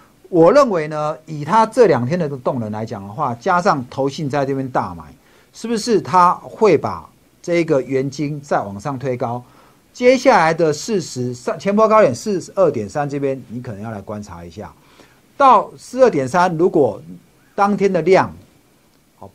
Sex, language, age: male, Chinese, 50-69